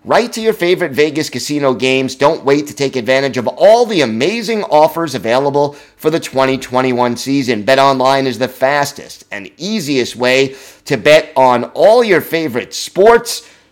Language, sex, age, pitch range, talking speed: English, male, 30-49, 130-155 Hz, 160 wpm